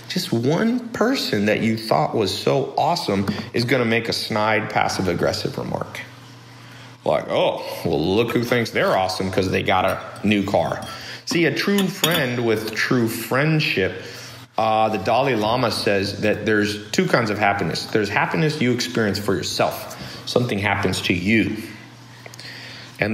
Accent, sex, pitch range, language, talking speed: American, male, 100-130 Hz, English, 155 wpm